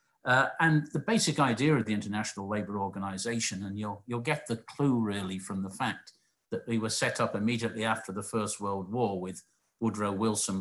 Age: 50-69